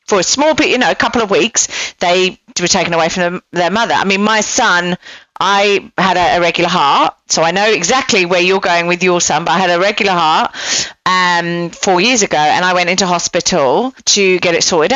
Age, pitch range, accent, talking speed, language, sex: 40-59, 175-220 Hz, British, 225 wpm, English, female